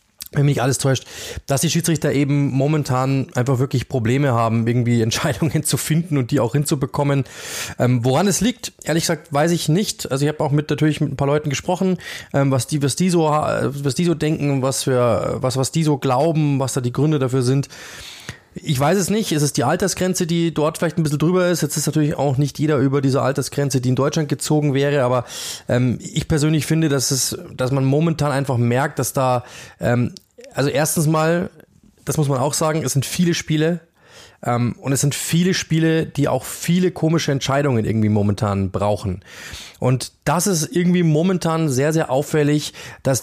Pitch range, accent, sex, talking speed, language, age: 130-155 Hz, German, male, 200 wpm, German, 20-39